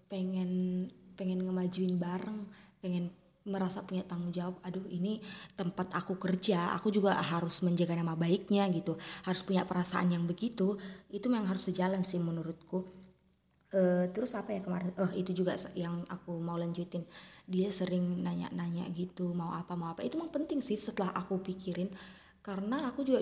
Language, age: Indonesian, 20-39